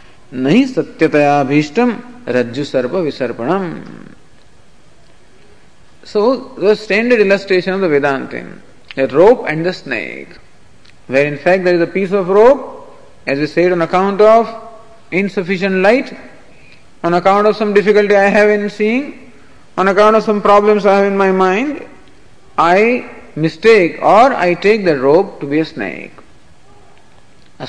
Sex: male